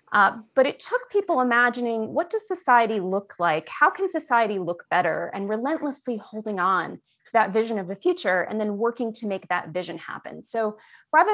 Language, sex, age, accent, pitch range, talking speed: English, female, 30-49, American, 180-235 Hz, 190 wpm